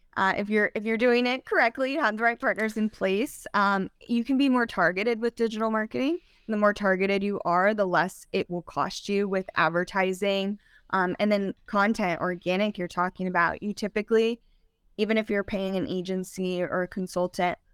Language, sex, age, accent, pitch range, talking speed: English, female, 10-29, American, 185-225 Hz, 190 wpm